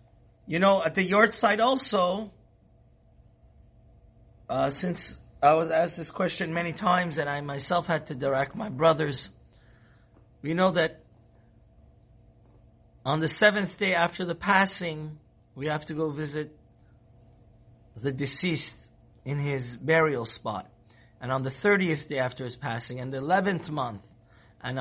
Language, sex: English, male